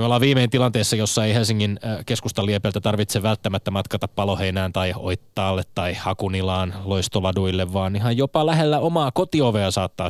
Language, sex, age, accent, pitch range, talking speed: Finnish, male, 20-39, native, 95-125 Hz, 150 wpm